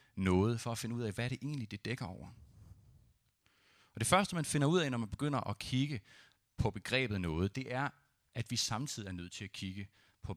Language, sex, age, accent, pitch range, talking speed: Danish, male, 30-49, native, 105-135 Hz, 225 wpm